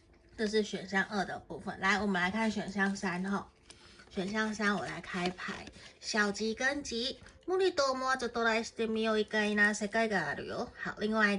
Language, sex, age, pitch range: Chinese, female, 30-49, 195-235 Hz